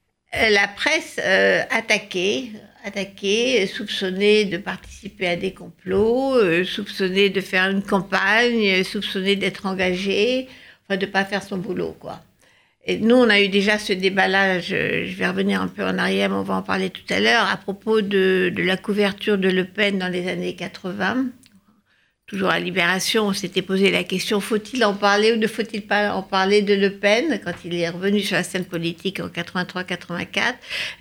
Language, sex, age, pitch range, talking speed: French, female, 60-79, 185-220 Hz, 180 wpm